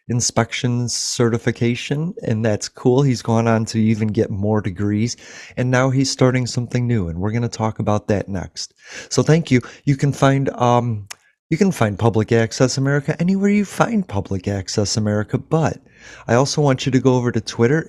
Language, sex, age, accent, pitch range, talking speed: English, male, 30-49, American, 110-135 Hz, 185 wpm